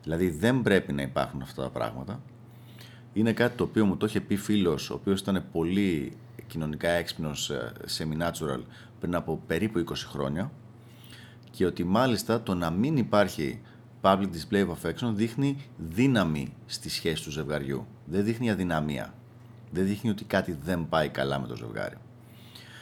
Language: Greek